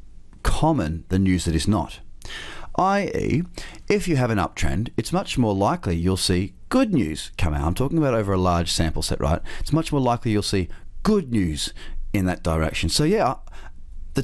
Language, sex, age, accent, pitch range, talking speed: English, male, 30-49, Australian, 85-110 Hz, 190 wpm